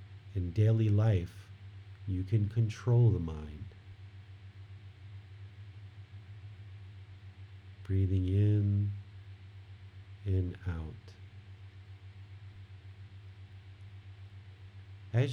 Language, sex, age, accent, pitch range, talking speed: English, male, 50-69, American, 95-100 Hz, 50 wpm